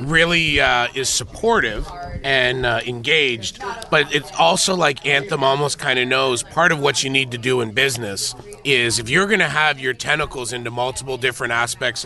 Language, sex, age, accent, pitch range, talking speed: English, male, 30-49, American, 115-145 Hz, 185 wpm